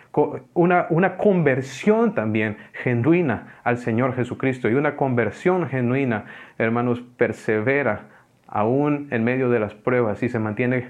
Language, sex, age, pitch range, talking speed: English, male, 40-59, 120-155 Hz, 125 wpm